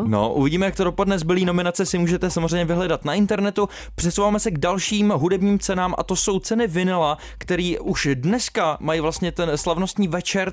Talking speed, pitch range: 180 wpm, 145-185 Hz